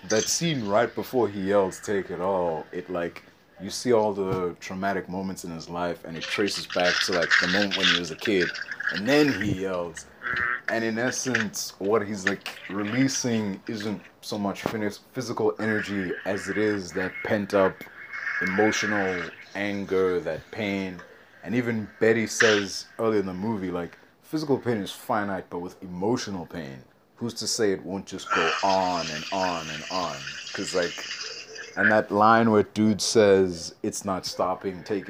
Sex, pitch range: male, 95-110 Hz